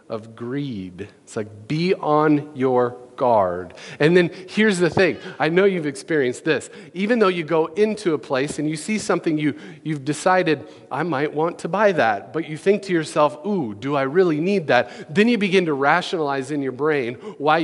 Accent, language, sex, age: American, English, male, 40-59